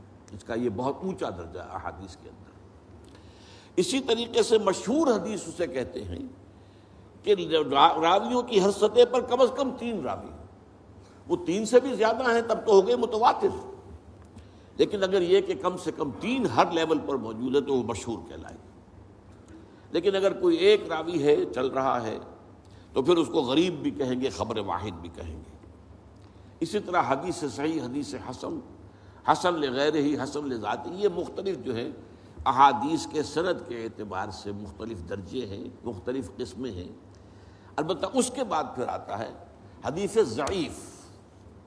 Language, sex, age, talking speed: Urdu, male, 60-79, 165 wpm